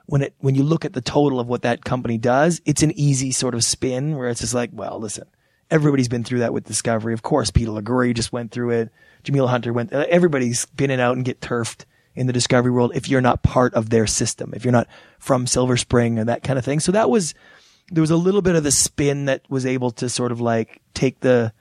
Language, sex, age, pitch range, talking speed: English, male, 20-39, 120-140 Hz, 260 wpm